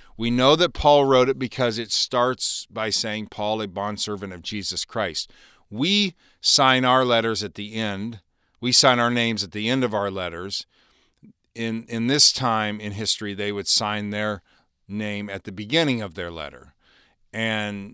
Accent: American